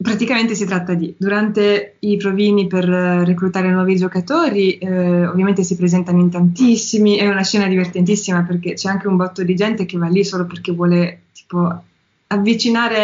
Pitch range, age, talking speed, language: 175-205 Hz, 20-39, 165 wpm, Italian